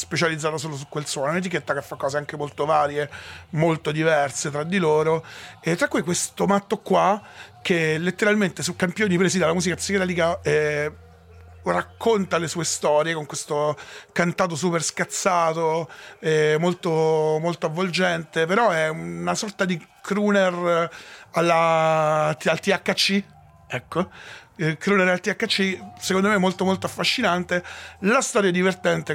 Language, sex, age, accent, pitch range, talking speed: Italian, male, 30-49, native, 150-185 Hz, 145 wpm